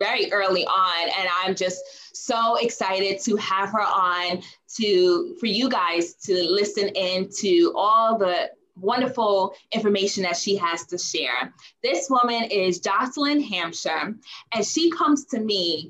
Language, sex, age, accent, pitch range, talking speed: English, female, 20-39, American, 190-270 Hz, 145 wpm